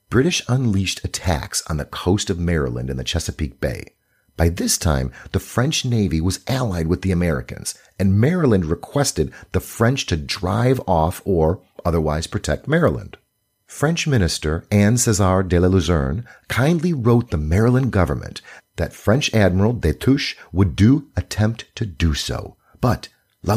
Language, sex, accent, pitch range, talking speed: English, male, American, 80-120 Hz, 150 wpm